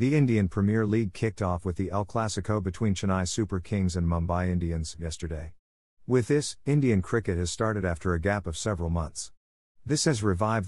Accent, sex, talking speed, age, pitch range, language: American, male, 185 wpm, 50-69, 90-115 Hz, English